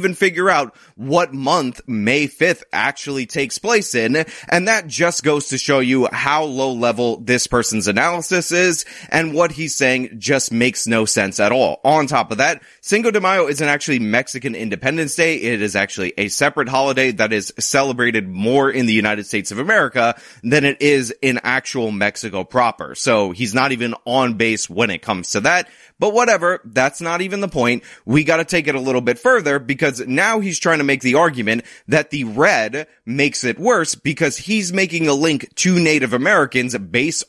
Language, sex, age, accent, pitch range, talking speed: English, male, 20-39, American, 125-175 Hz, 195 wpm